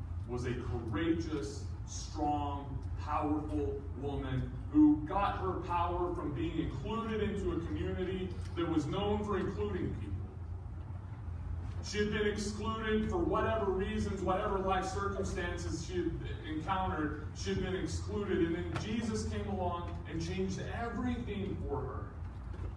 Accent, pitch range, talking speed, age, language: American, 90-105 Hz, 130 wpm, 40-59, English